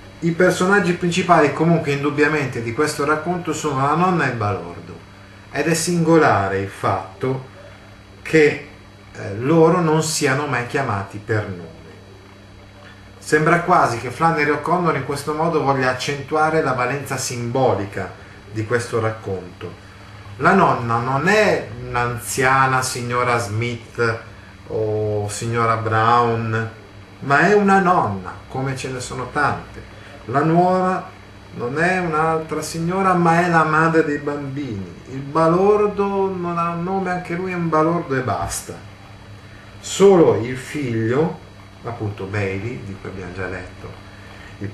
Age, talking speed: 30-49, 135 wpm